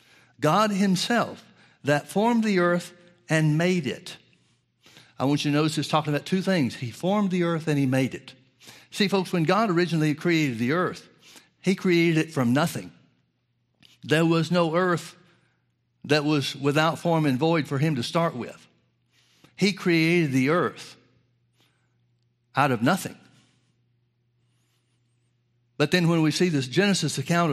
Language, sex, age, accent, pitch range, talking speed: English, male, 60-79, American, 130-175 Hz, 155 wpm